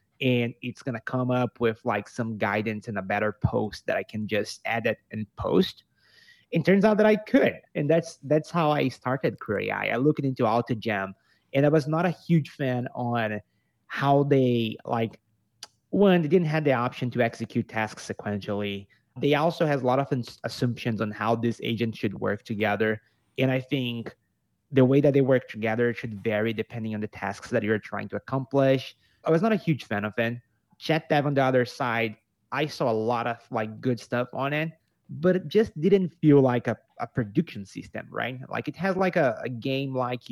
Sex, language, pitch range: male, English, 110-140 Hz